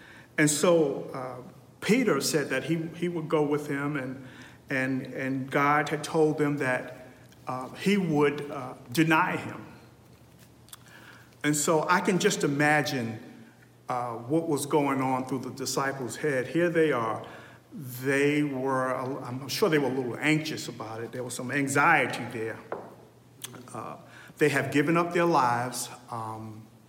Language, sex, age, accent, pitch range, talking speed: English, male, 50-69, American, 125-160 Hz, 150 wpm